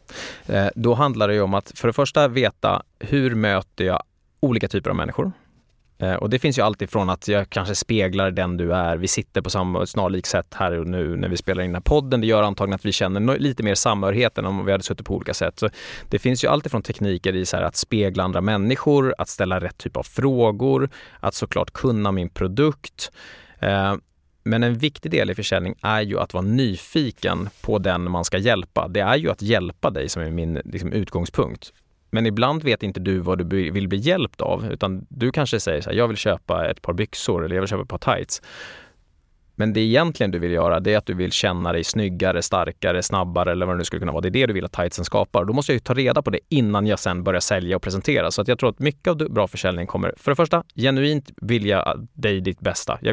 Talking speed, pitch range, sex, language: 240 wpm, 90-115 Hz, male, Swedish